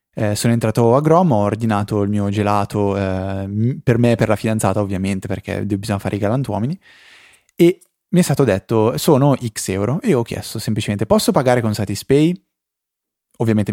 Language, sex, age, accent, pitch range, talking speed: Italian, male, 20-39, native, 105-130 Hz, 175 wpm